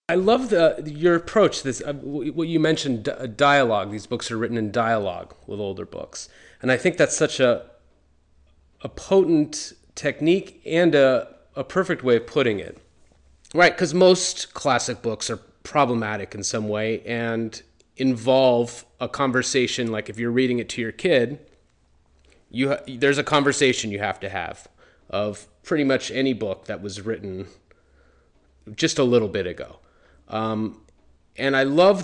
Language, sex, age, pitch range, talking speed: English, male, 30-49, 100-135 Hz, 165 wpm